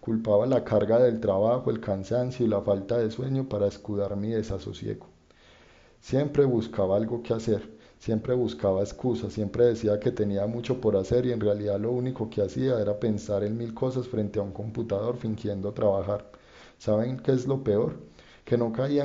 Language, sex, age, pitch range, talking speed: Spanish, male, 30-49, 105-120 Hz, 180 wpm